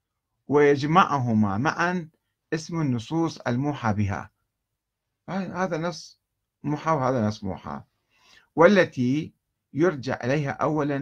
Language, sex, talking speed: Arabic, male, 85 wpm